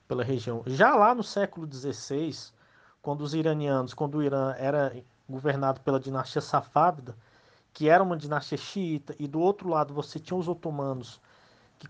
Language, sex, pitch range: Portuguese, male, 135-185 Hz